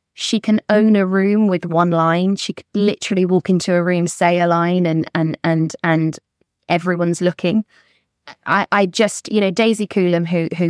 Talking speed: 185 wpm